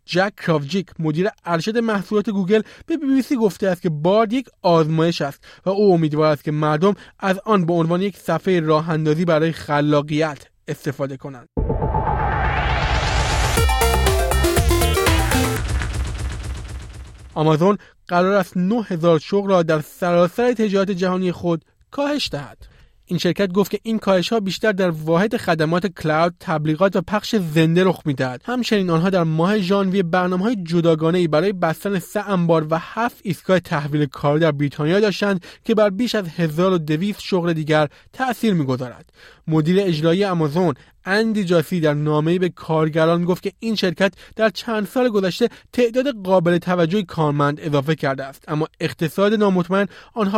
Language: Persian